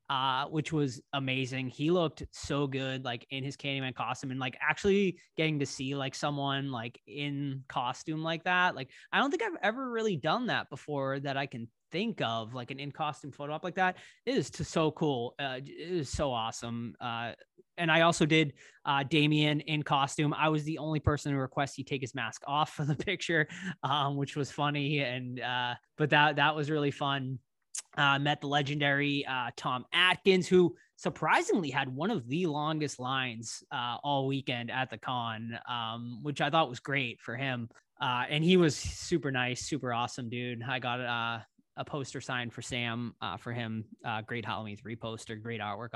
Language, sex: English, male